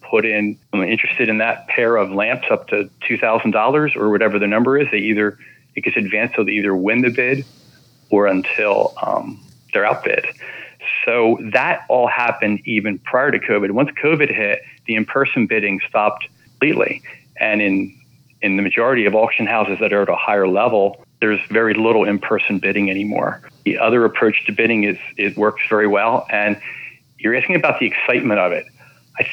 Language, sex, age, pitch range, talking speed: English, male, 40-59, 100-115 Hz, 180 wpm